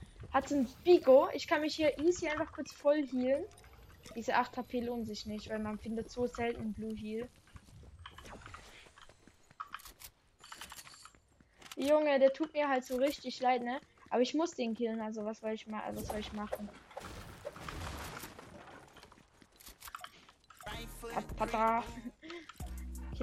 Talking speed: 125 wpm